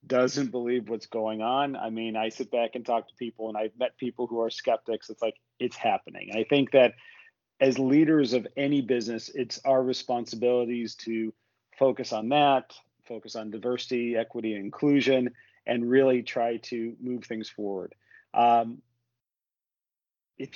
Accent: American